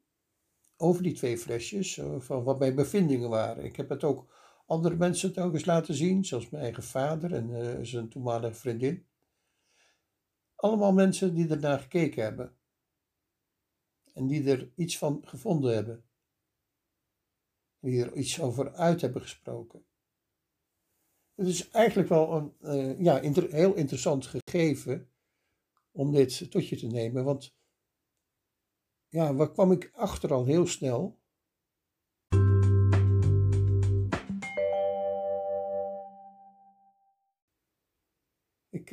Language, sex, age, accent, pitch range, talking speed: Dutch, male, 60-79, Dutch, 120-165 Hz, 110 wpm